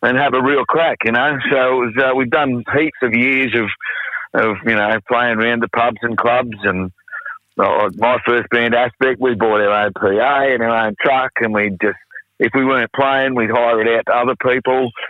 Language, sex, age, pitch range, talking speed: English, male, 50-69, 115-135 Hz, 220 wpm